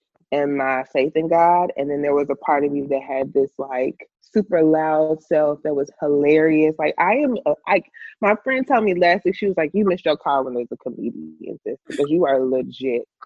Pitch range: 140-170 Hz